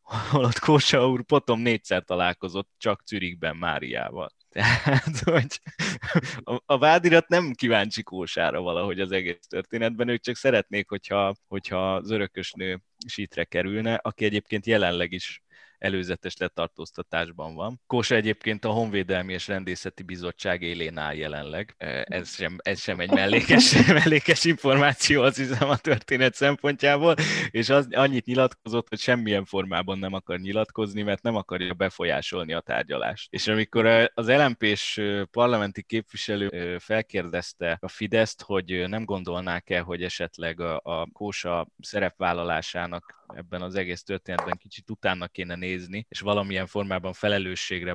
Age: 20-39